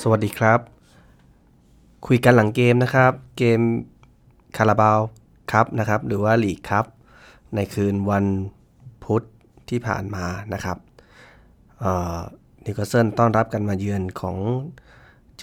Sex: male